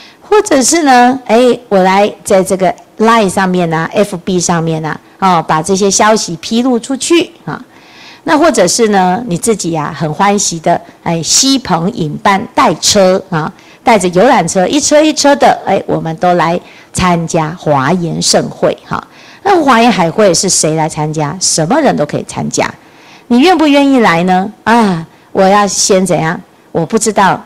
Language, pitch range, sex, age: Chinese, 175-245 Hz, female, 50-69